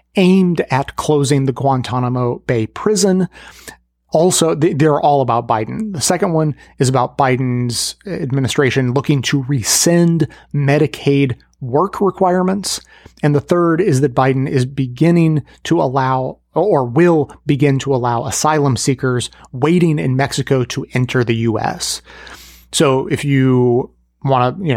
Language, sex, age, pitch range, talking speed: English, male, 30-49, 125-155 Hz, 135 wpm